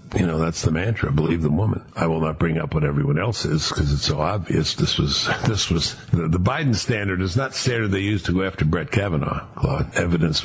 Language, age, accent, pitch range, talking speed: English, 60-79, American, 80-115 Hz, 230 wpm